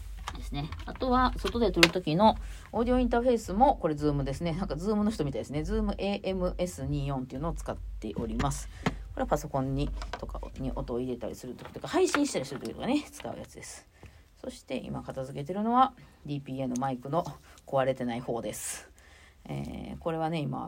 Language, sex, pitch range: Japanese, female, 125-200 Hz